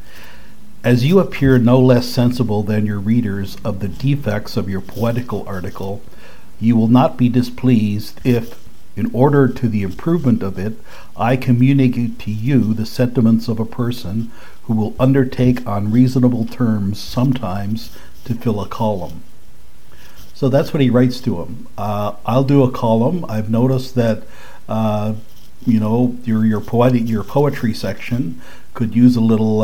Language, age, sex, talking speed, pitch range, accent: English, 60-79, male, 155 wpm, 105-125 Hz, American